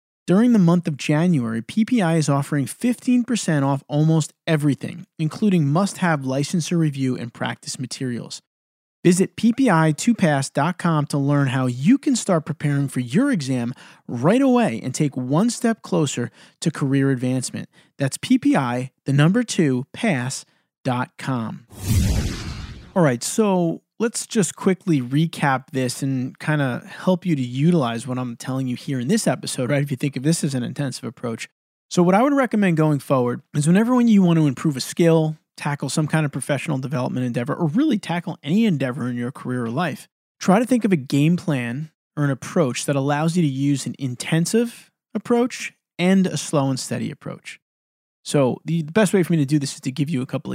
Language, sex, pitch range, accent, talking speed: English, male, 135-185 Hz, American, 180 wpm